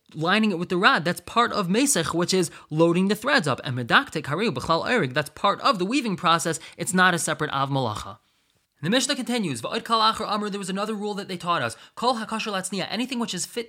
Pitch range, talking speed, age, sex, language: 155-205 Hz, 200 wpm, 20-39, male, English